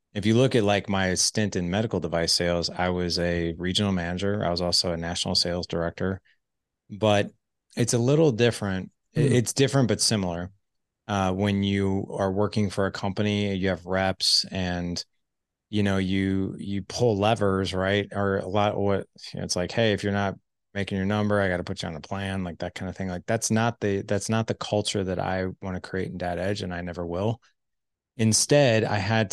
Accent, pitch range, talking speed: American, 90-105 Hz, 205 wpm